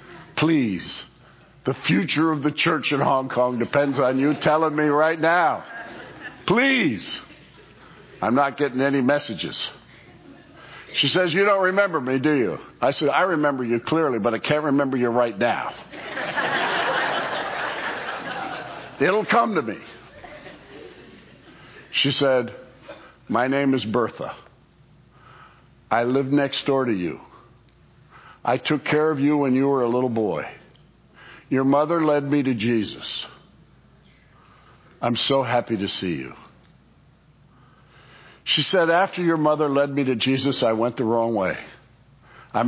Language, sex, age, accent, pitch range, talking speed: English, male, 60-79, American, 125-155 Hz, 135 wpm